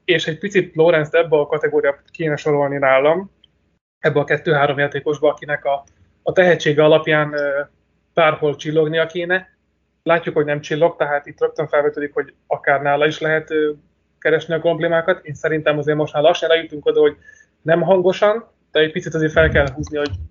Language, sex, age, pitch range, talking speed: Hungarian, male, 20-39, 145-165 Hz, 180 wpm